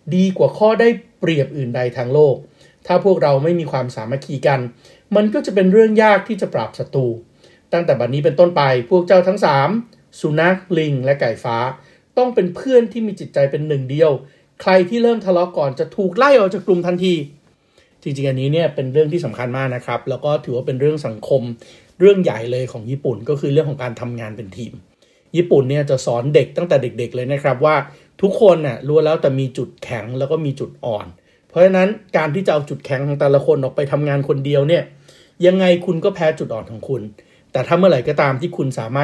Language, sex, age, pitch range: Thai, male, 60-79, 135-180 Hz